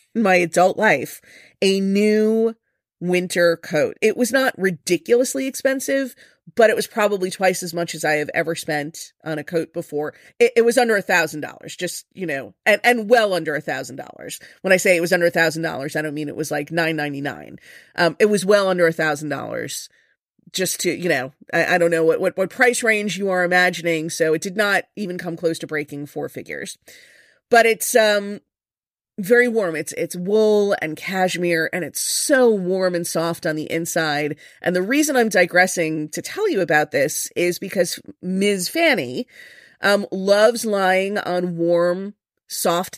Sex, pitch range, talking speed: female, 165-210 Hz, 190 wpm